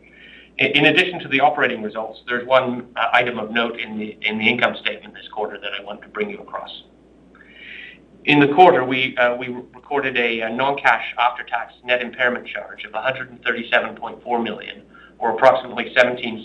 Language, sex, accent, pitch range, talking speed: English, male, American, 110-130 Hz, 170 wpm